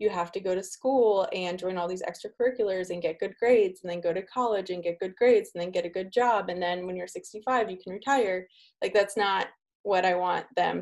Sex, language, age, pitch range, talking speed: female, English, 20-39, 180-230 Hz, 250 wpm